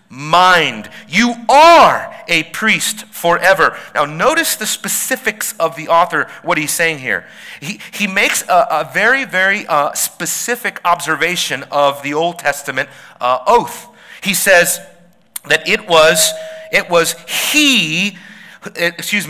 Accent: American